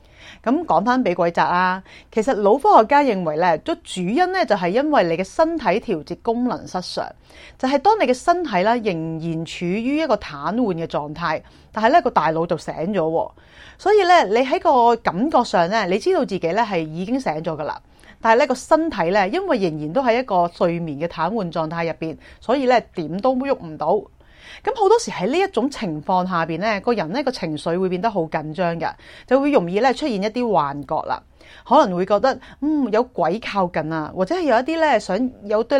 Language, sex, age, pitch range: Chinese, female, 30-49, 165-255 Hz